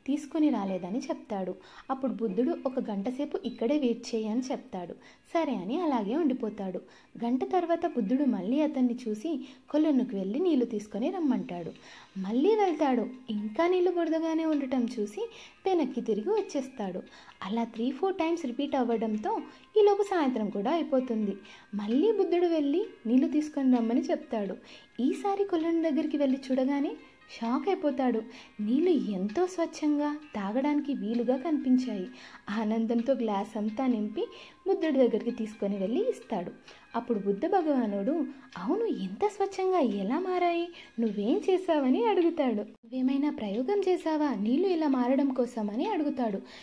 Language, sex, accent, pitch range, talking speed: Telugu, female, native, 230-315 Hz, 125 wpm